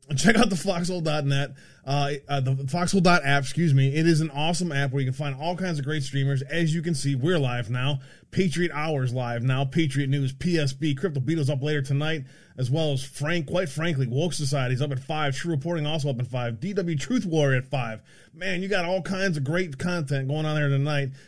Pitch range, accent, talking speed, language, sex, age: 135-170 Hz, American, 220 wpm, English, male, 20-39